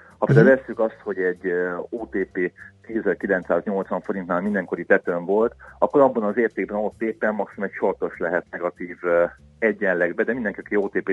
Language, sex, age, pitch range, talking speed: Hungarian, male, 40-59, 90-110 Hz, 145 wpm